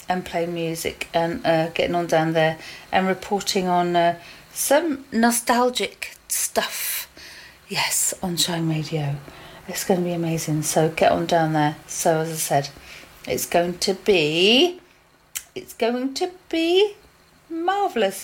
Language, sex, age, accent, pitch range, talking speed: English, female, 40-59, British, 170-220 Hz, 140 wpm